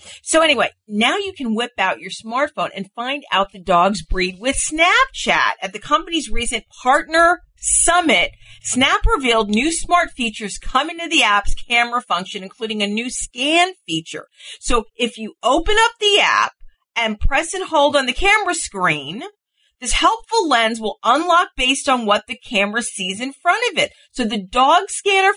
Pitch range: 225-320 Hz